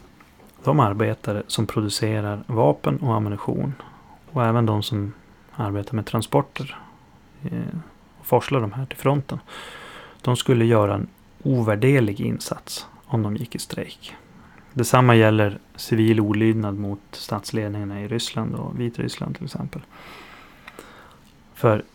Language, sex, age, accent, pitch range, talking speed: Swedish, male, 30-49, native, 105-125 Hz, 120 wpm